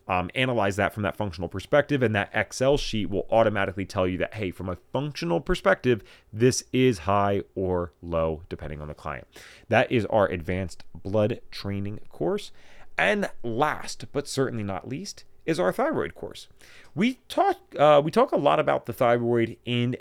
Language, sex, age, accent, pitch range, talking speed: English, male, 30-49, American, 90-135 Hz, 175 wpm